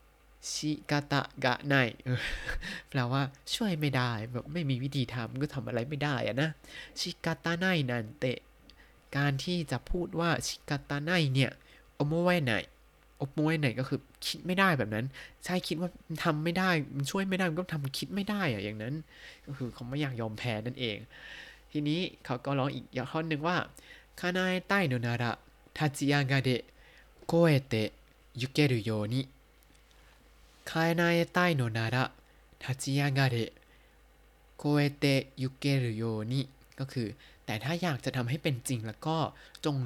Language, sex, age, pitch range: Thai, male, 20-39, 125-165 Hz